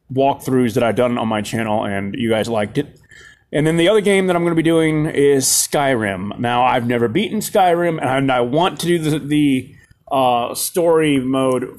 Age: 30-49